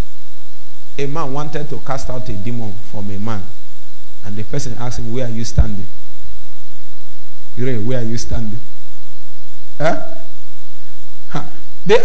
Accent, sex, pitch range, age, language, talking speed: Nigerian, male, 105-145 Hz, 40-59, English, 130 wpm